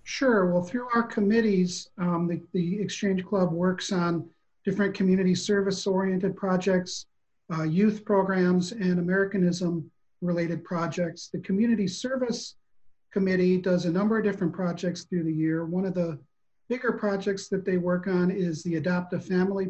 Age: 40-59